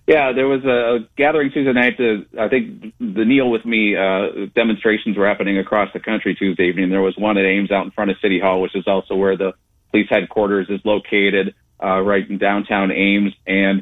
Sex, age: male, 40-59